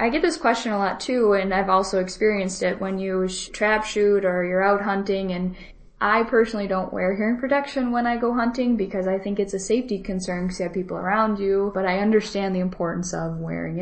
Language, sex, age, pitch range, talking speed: English, female, 10-29, 180-205 Hz, 225 wpm